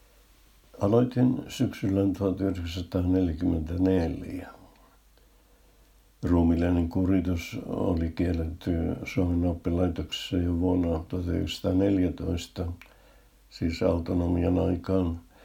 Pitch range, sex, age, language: 85-95 Hz, male, 60-79, Finnish